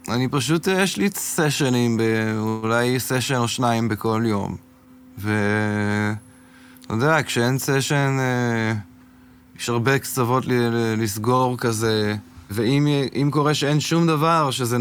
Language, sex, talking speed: Hebrew, male, 105 wpm